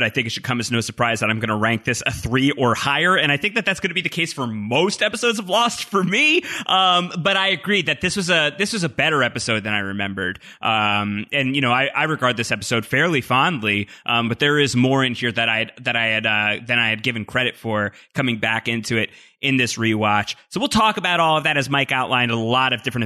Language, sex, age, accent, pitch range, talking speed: English, male, 20-39, American, 115-170 Hz, 265 wpm